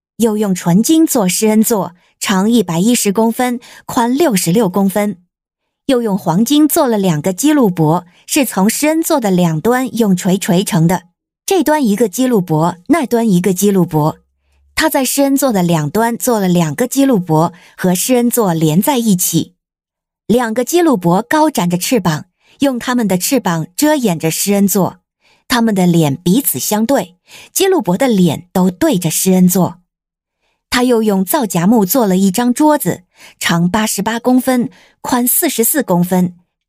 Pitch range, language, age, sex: 180-255 Hz, Chinese, 50-69, female